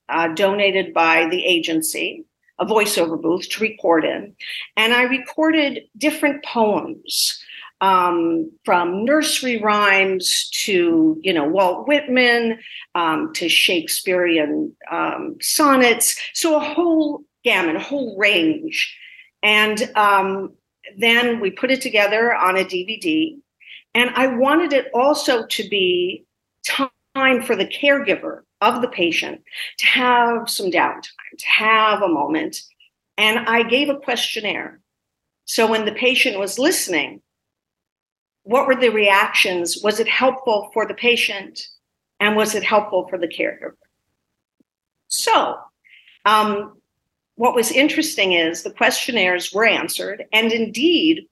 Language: English